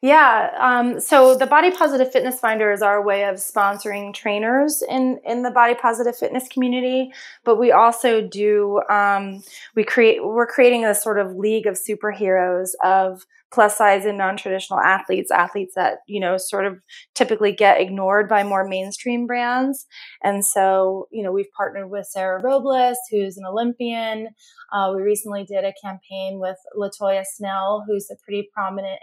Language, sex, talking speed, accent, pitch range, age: English, female, 165 wpm, American, 190-230 Hz, 20-39